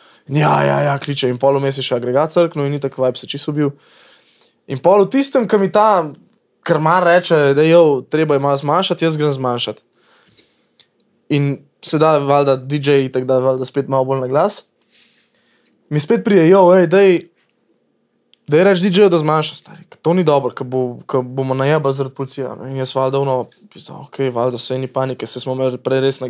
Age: 20-39